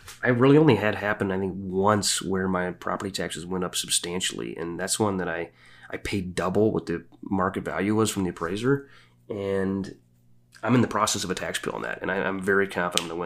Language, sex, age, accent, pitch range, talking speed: English, male, 30-49, American, 90-105 Hz, 225 wpm